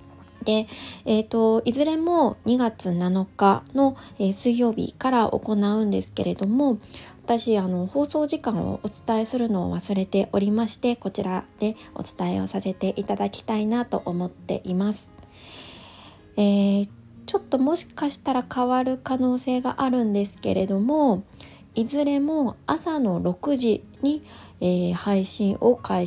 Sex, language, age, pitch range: female, Japanese, 20-39, 190-270 Hz